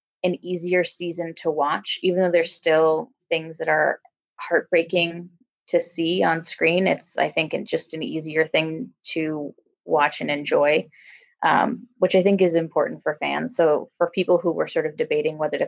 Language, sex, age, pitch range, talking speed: English, female, 20-39, 160-185 Hz, 175 wpm